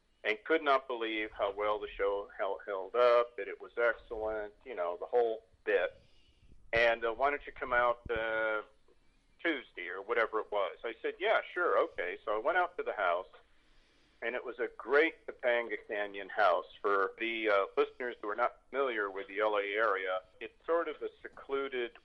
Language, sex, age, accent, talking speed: English, male, 50-69, American, 190 wpm